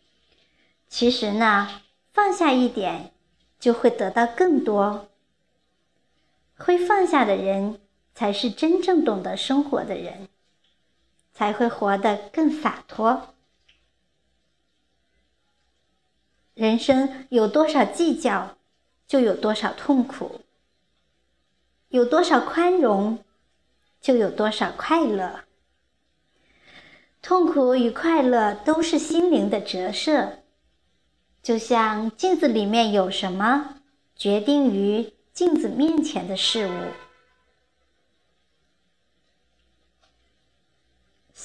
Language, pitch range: Chinese, 205-295 Hz